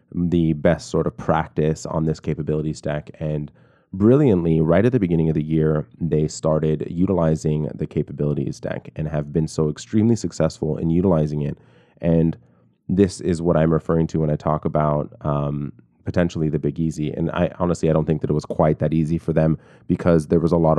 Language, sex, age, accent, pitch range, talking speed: English, male, 20-39, American, 75-85 Hz, 195 wpm